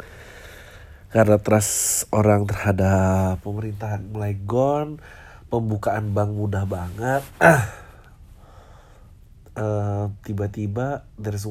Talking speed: 80 wpm